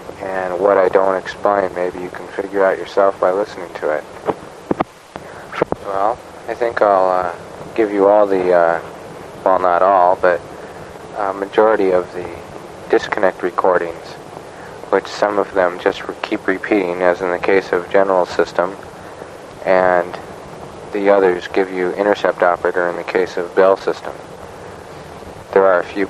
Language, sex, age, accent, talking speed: English, male, 40-59, American, 150 wpm